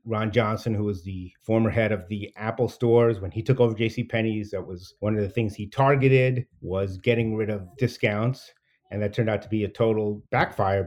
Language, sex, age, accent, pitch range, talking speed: English, male, 30-49, American, 110-150 Hz, 215 wpm